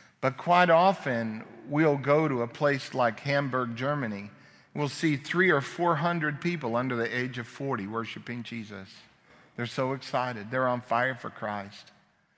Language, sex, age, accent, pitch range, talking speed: English, male, 50-69, American, 115-140 Hz, 160 wpm